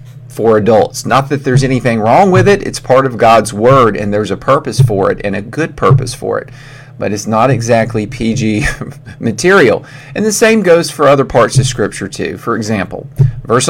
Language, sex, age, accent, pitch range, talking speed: English, male, 40-59, American, 110-135 Hz, 195 wpm